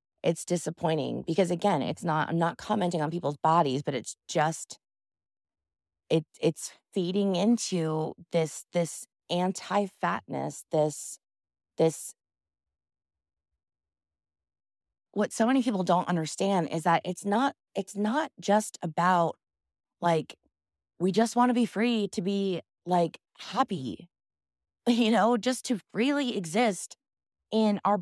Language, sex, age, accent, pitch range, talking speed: English, female, 20-39, American, 150-215 Hz, 120 wpm